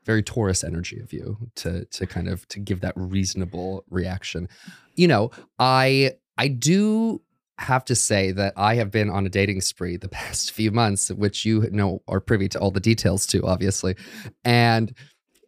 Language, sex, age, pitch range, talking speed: English, male, 20-39, 95-115 Hz, 180 wpm